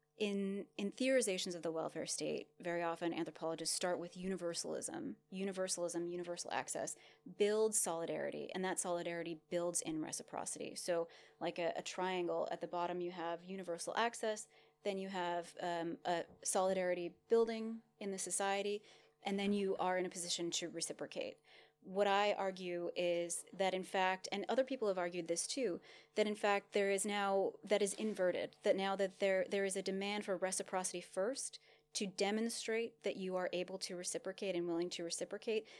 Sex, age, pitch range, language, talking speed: female, 30-49, 170-200 Hz, English, 170 wpm